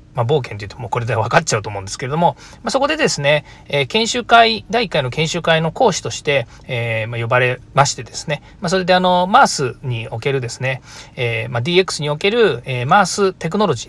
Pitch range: 125-180 Hz